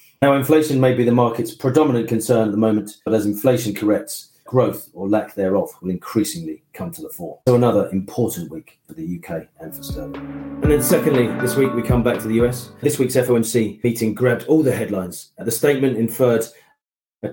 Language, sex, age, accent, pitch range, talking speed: English, male, 40-59, British, 110-130 Hz, 200 wpm